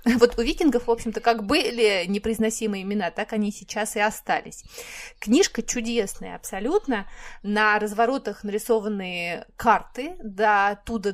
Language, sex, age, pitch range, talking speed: Russian, female, 20-39, 185-230 Hz, 130 wpm